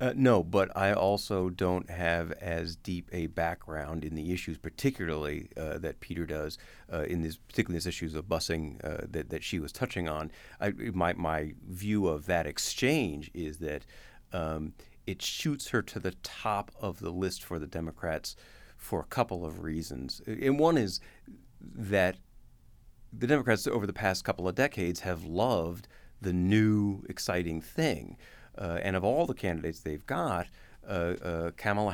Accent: American